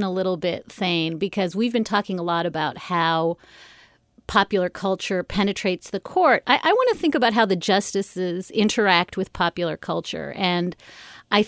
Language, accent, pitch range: English, American, 180-235 Hz